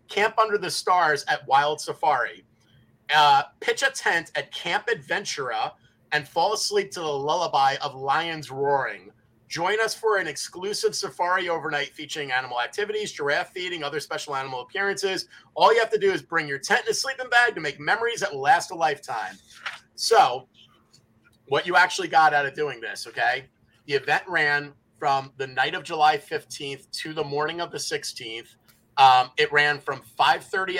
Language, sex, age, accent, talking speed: English, male, 30-49, American, 175 wpm